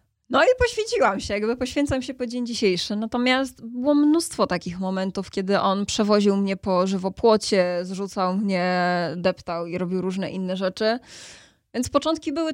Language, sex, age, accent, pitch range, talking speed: Polish, female, 20-39, native, 190-230 Hz, 155 wpm